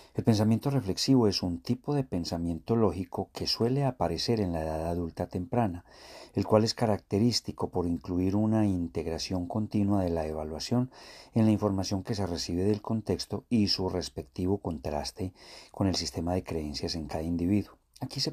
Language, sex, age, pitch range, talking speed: Spanish, male, 40-59, 85-110 Hz, 165 wpm